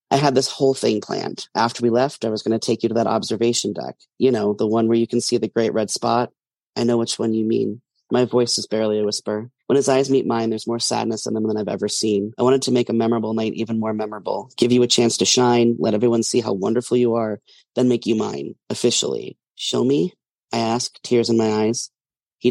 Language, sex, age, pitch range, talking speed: English, male, 30-49, 110-125 Hz, 250 wpm